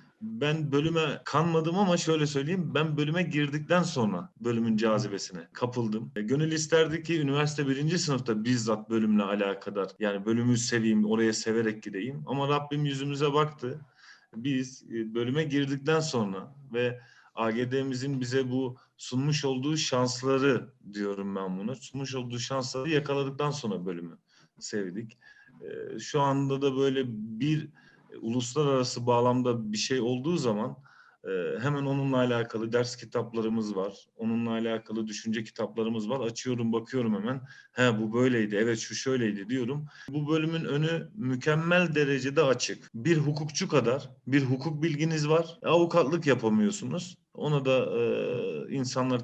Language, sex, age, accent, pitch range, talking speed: Turkish, male, 40-59, native, 115-150 Hz, 130 wpm